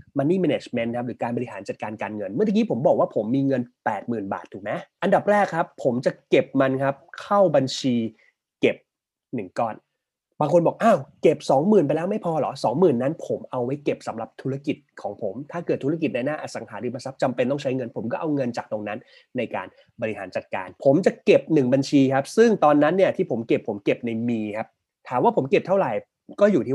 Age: 20-39